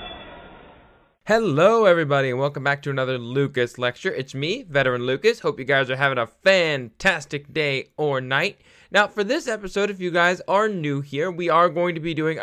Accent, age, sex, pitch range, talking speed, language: American, 10-29, male, 130-165 Hz, 190 wpm, English